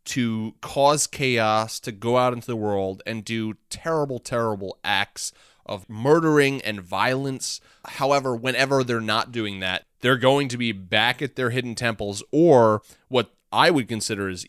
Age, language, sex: 30-49, English, male